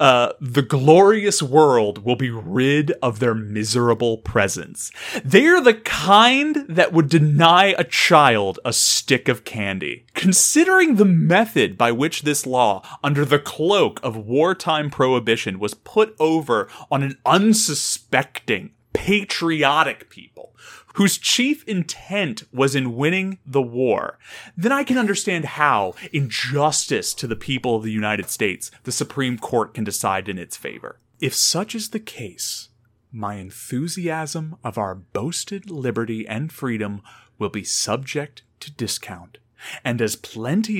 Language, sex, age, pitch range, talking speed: English, male, 30-49, 115-170 Hz, 140 wpm